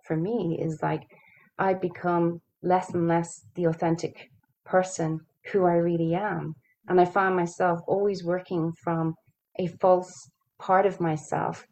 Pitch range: 160-185 Hz